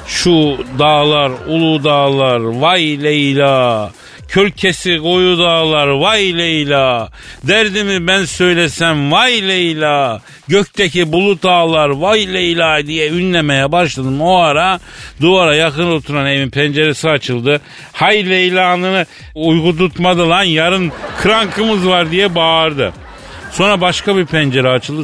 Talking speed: 115 wpm